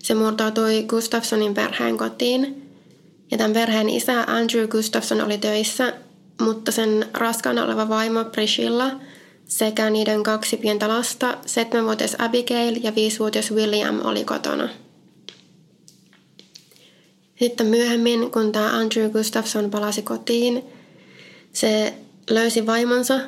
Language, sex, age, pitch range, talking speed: Finnish, female, 20-39, 210-235 Hz, 110 wpm